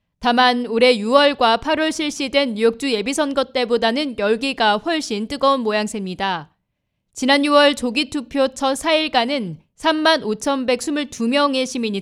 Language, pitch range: Korean, 225-290 Hz